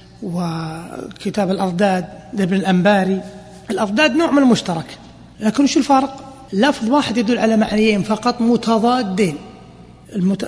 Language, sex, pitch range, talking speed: Arabic, male, 200-270 Hz, 110 wpm